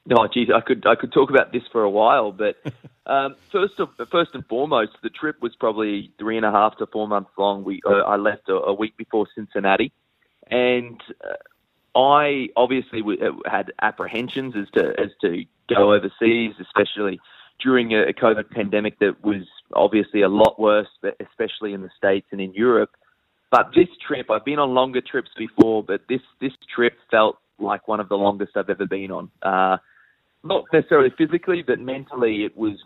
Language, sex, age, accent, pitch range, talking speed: English, male, 20-39, Australian, 100-130 Hz, 185 wpm